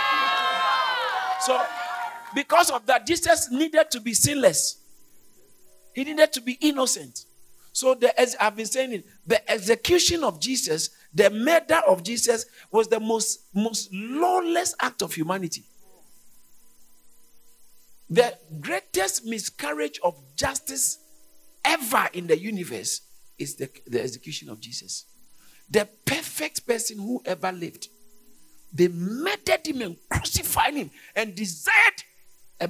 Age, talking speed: 50-69, 120 wpm